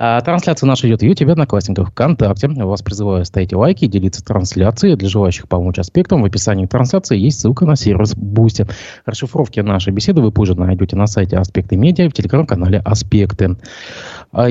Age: 20-39